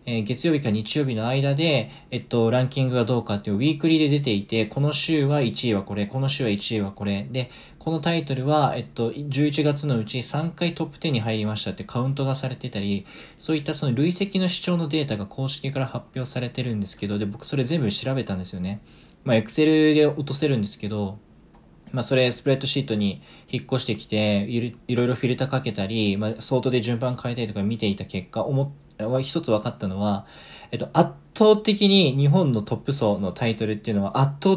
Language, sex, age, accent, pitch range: Japanese, male, 20-39, native, 105-145 Hz